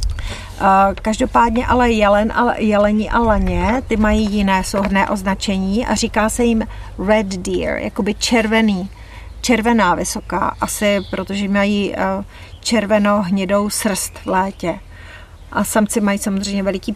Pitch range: 185-215 Hz